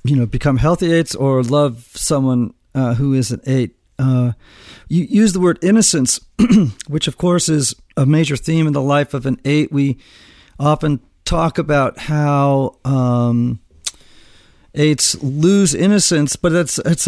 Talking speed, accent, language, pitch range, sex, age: 155 wpm, American, English, 120-160 Hz, male, 40-59